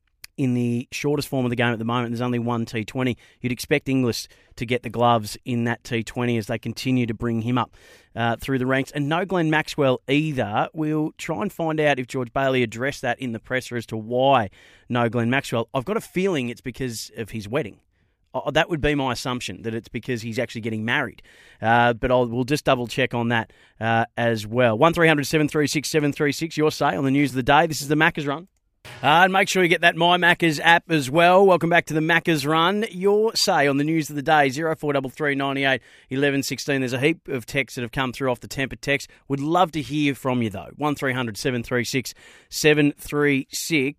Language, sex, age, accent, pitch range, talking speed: English, male, 30-49, Australian, 120-150 Hz, 220 wpm